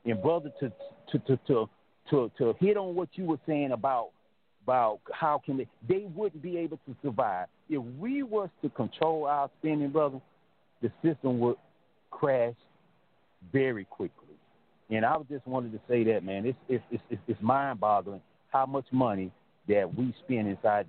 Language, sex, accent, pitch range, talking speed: English, male, American, 105-145 Hz, 170 wpm